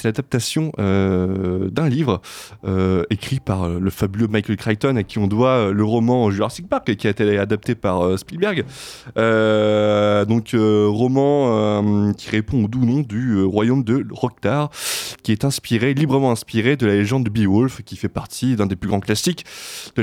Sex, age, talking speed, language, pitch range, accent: male, 20-39, 185 wpm, French, 105-130 Hz, French